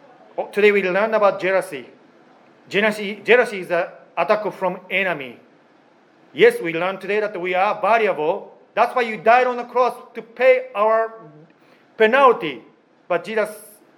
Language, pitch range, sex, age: Japanese, 170-225 Hz, male, 40-59